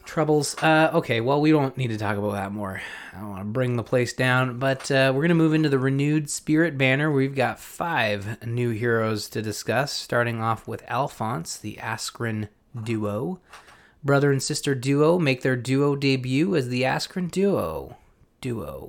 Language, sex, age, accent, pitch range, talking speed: English, male, 20-39, American, 110-140 Hz, 185 wpm